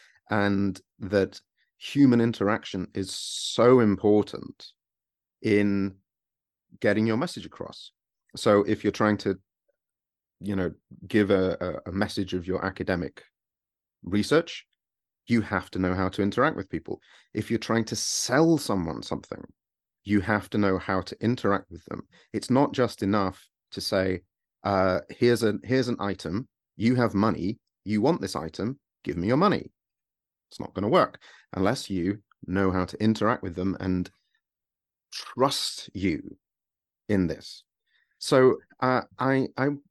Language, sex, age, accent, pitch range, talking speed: English, male, 30-49, British, 95-115 Hz, 145 wpm